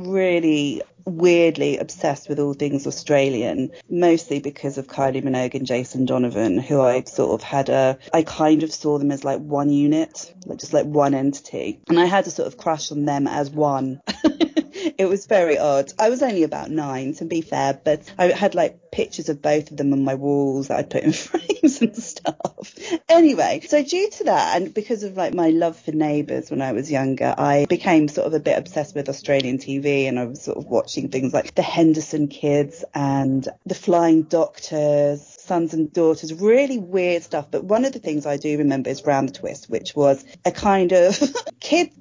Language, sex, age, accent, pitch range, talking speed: English, female, 30-49, British, 145-195 Hz, 205 wpm